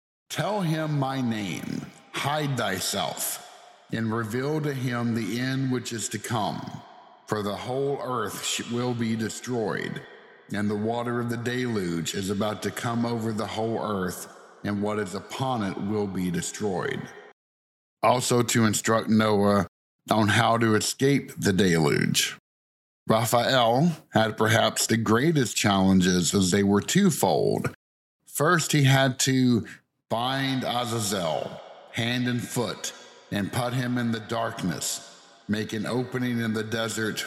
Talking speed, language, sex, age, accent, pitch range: 140 wpm, English, male, 50-69, American, 100-125 Hz